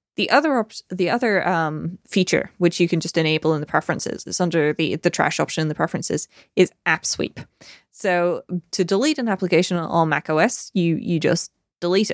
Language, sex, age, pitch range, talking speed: English, female, 20-39, 165-190 Hz, 190 wpm